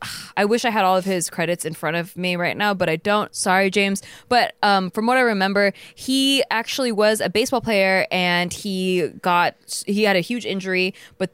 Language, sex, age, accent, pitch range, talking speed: English, female, 20-39, American, 175-205 Hz, 210 wpm